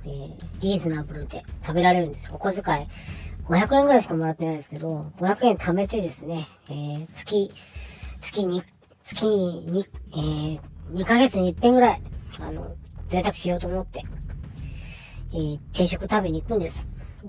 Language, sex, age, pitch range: Japanese, male, 40-59, 150-240 Hz